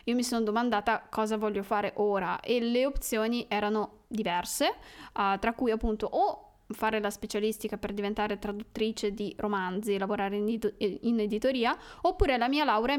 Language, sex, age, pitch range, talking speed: Italian, female, 20-39, 210-260 Hz, 155 wpm